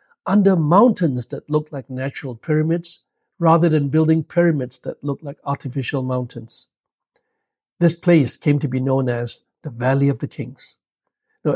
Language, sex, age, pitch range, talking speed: English, male, 60-79, 135-170 Hz, 150 wpm